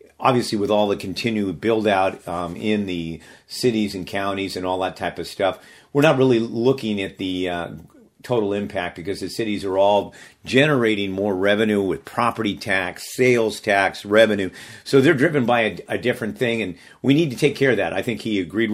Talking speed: 200 wpm